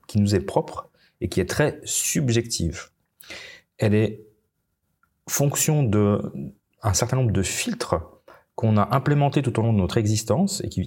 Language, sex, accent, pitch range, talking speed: French, male, French, 90-115 Hz, 160 wpm